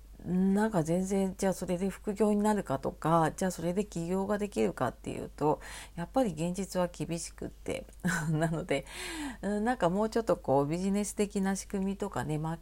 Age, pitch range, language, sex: 40-59, 155-205 Hz, Japanese, female